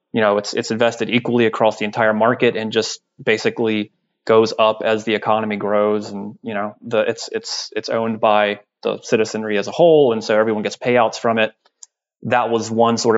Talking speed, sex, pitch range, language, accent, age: 200 wpm, male, 105-120 Hz, English, American, 20-39